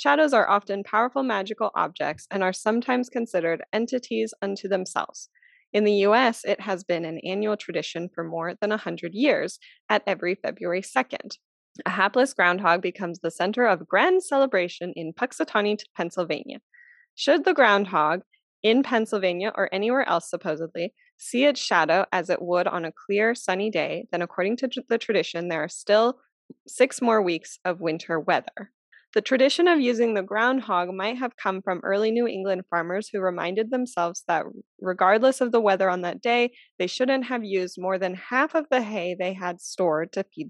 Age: 20-39